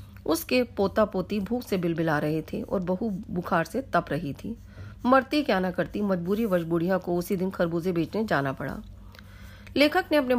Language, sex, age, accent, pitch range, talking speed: Hindi, female, 40-59, native, 170-225 Hz, 180 wpm